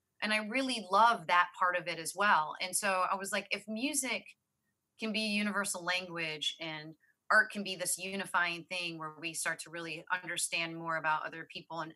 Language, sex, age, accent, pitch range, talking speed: English, female, 30-49, American, 165-195 Hz, 200 wpm